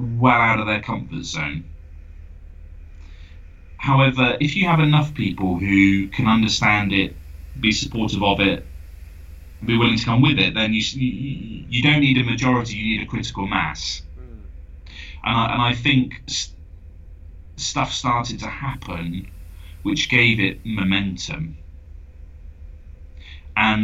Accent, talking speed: British, 130 wpm